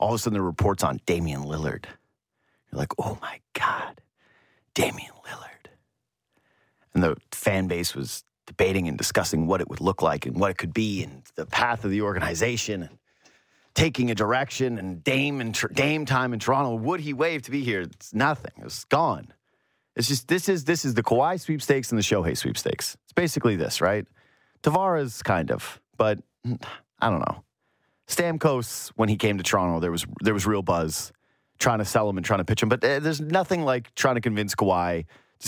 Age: 30-49